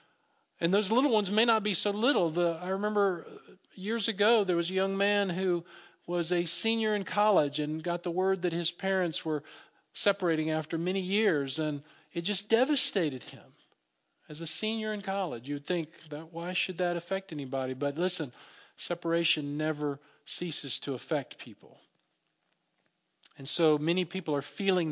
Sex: male